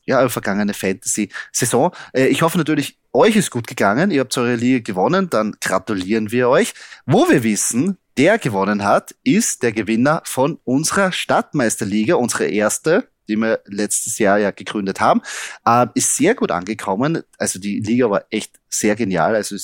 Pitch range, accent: 100-125 Hz, German